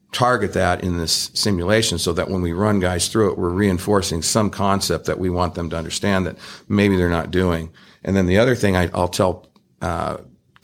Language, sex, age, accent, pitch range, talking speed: English, male, 50-69, American, 90-115 Hz, 210 wpm